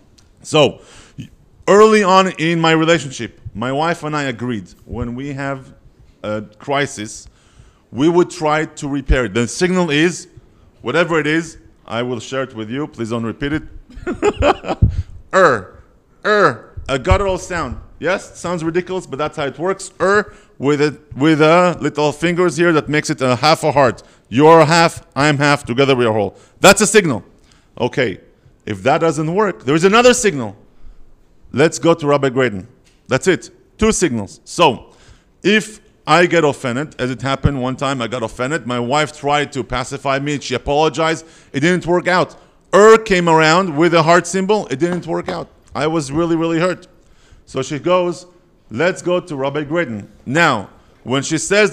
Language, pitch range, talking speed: English, 130-175 Hz, 175 wpm